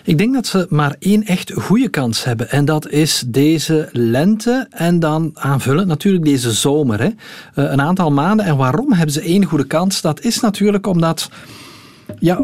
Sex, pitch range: male, 135-190 Hz